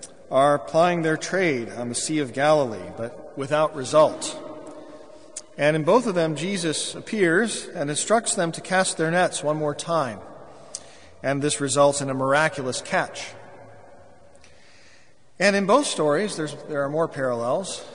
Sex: male